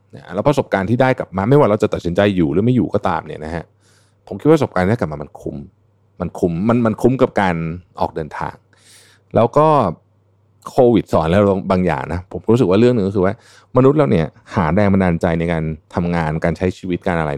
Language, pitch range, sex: Thai, 85-110 Hz, male